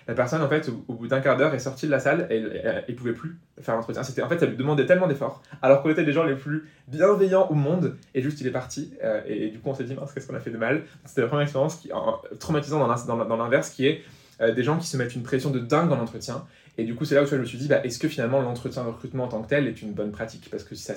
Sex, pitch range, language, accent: male, 115-145 Hz, French, French